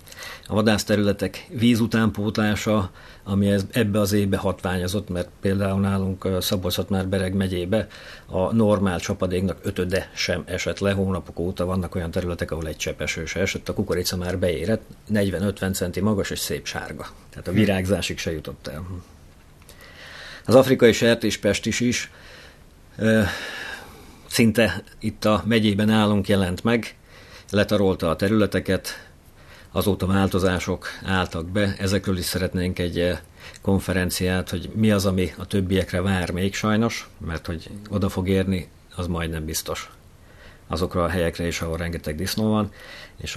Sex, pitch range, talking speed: male, 85-100 Hz, 140 wpm